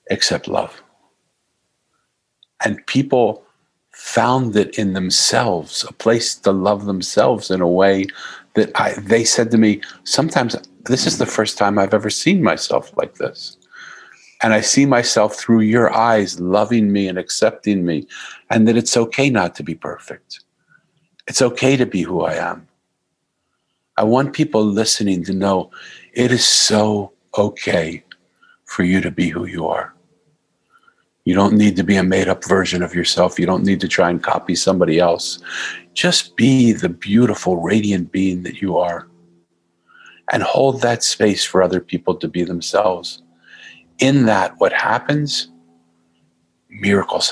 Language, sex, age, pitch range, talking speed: English, male, 50-69, 90-120 Hz, 155 wpm